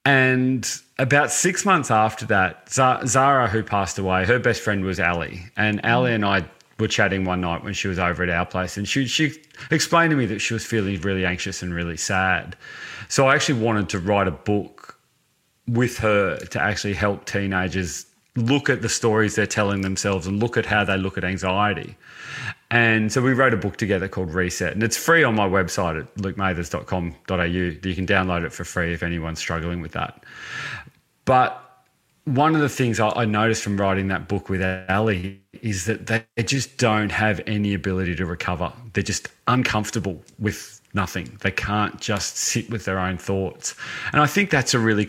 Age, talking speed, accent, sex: 30-49, 190 wpm, Australian, male